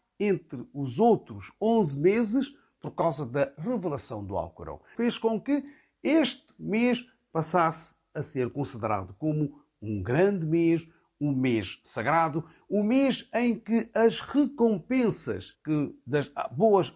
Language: Portuguese